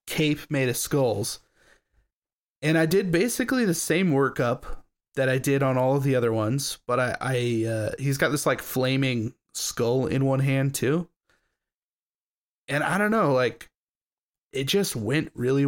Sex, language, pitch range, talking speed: male, English, 125-145 Hz, 165 wpm